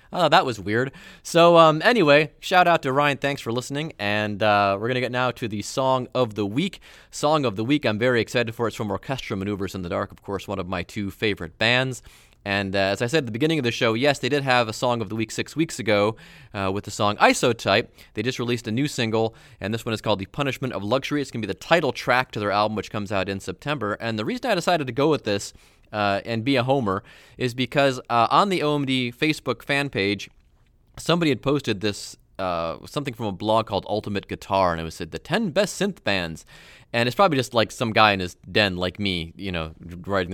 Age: 30-49